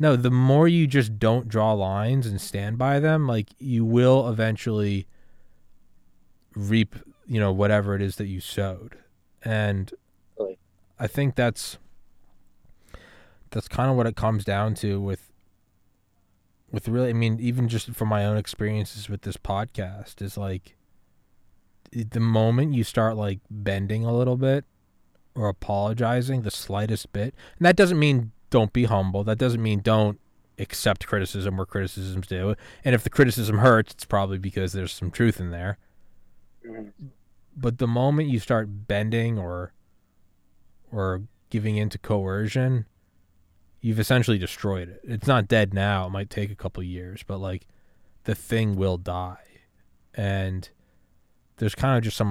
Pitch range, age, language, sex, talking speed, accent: 95-115 Hz, 20-39, English, male, 155 wpm, American